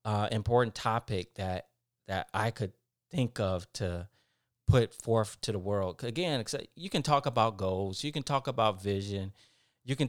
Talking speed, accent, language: 165 wpm, American, English